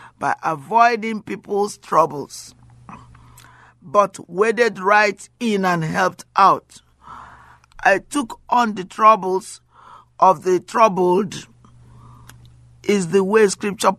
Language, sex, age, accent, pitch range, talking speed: English, male, 50-69, Nigerian, 120-205 Hz, 100 wpm